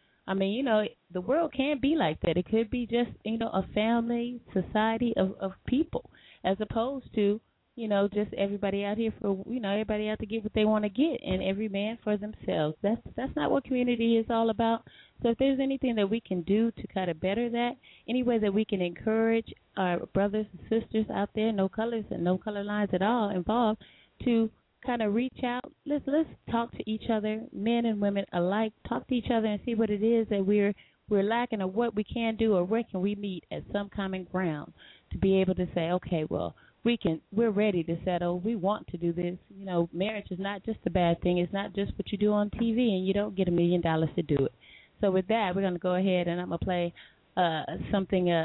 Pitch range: 185-230 Hz